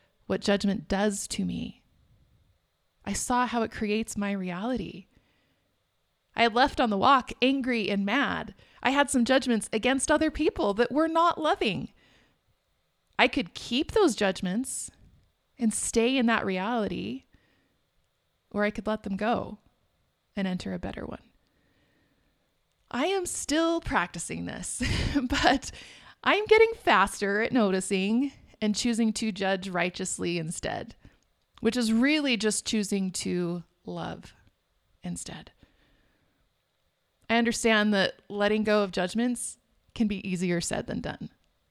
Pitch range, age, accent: 200-255 Hz, 30-49, American